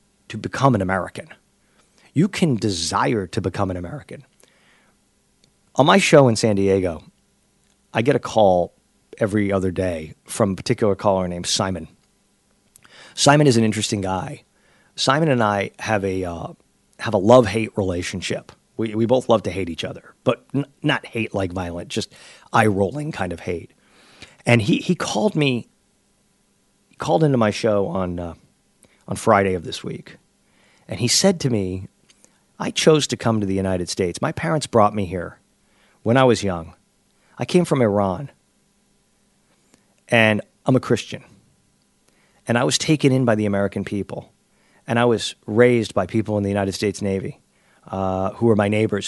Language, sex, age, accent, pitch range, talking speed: English, male, 40-59, American, 95-125 Hz, 170 wpm